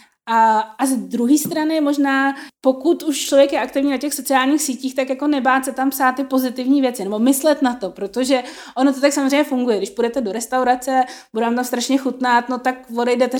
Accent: native